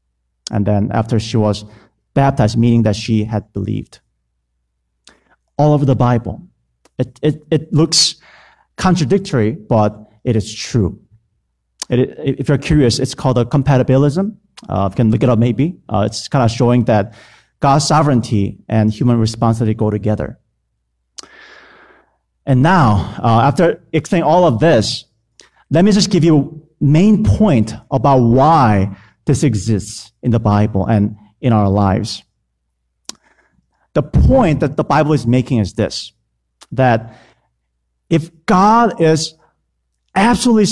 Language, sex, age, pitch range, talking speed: English, male, 40-59, 105-150 Hz, 140 wpm